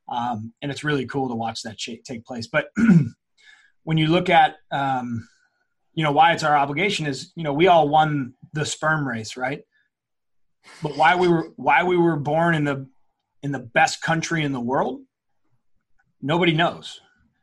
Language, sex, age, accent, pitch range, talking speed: English, male, 30-49, American, 130-165 Hz, 175 wpm